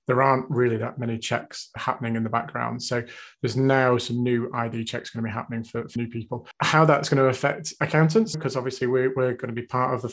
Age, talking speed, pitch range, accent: 30-49, 245 wpm, 120-135 Hz, British